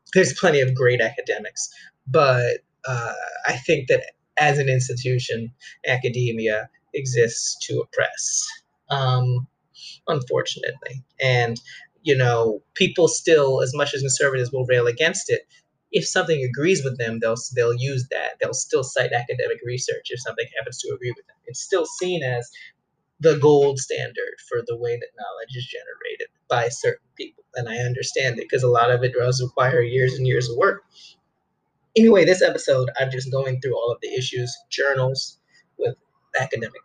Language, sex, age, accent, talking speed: English, male, 30-49, American, 165 wpm